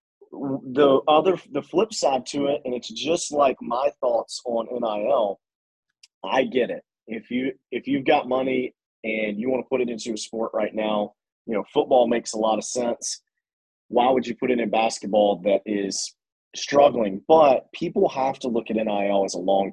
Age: 30-49